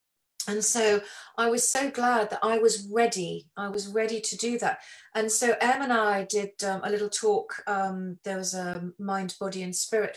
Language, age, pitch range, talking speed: English, 40-59, 200-235 Hz, 200 wpm